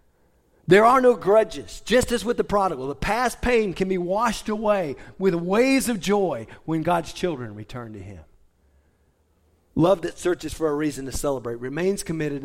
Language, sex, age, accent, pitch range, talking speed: English, male, 40-59, American, 135-220 Hz, 175 wpm